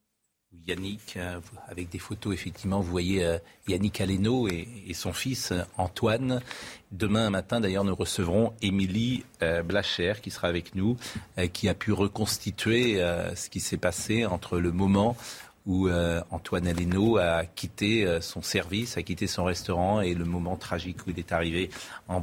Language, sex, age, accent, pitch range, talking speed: French, male, 40-59, French, 90-120 Hz, 165 wpm